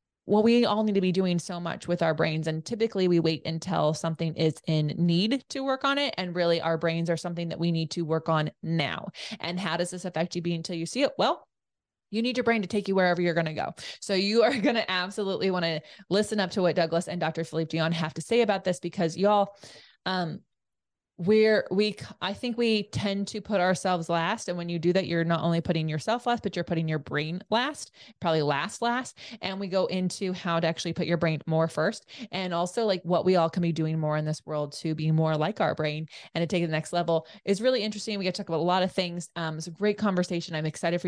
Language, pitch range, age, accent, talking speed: English, 165-205 Hz, 20-39, American, 255 wpm